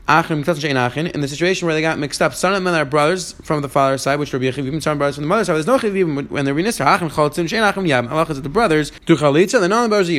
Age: 30-49